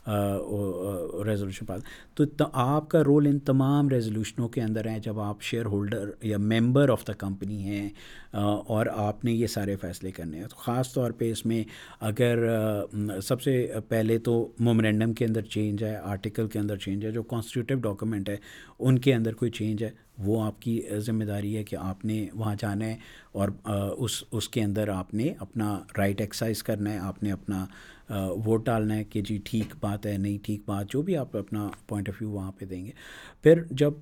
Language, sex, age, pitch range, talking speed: Urdu, male, 50-69, 105-125 Hz, 200 wpm